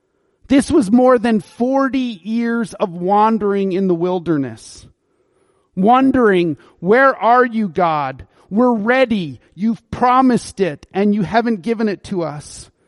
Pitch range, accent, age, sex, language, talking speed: 175-235 Hz, American, 40-59, male, English, 130 wpm